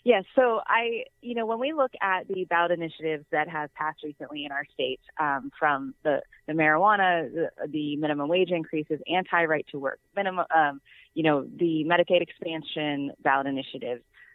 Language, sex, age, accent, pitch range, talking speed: English, female, 30-49, American, 140-165 Hz, 165 wpm